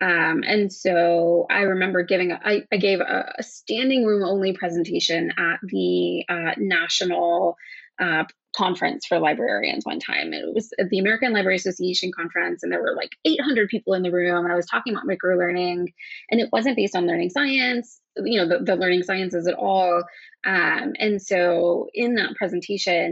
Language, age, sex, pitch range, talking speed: English, 20-39, female, 180-255 Hz, 185 wpm